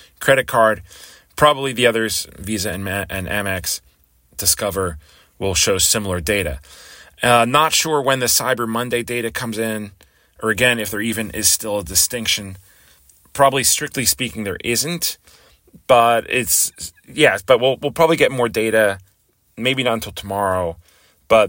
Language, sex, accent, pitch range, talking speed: English, male, American, 95-120 Hz, 155 wpm